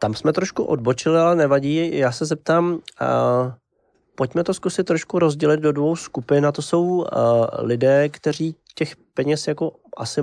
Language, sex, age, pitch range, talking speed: Slovak, male, 20-39, 125-150 Hz, 165 wpm